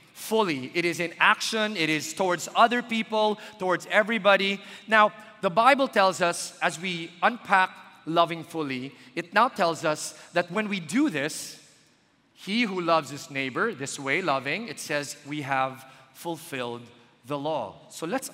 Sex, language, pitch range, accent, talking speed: male, English, 150-200 Hz, Filipino, 155 wpm